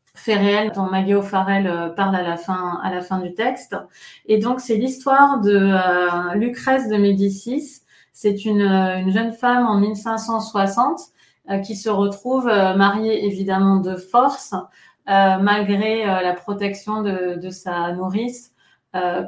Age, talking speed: 30-49, 155 wpm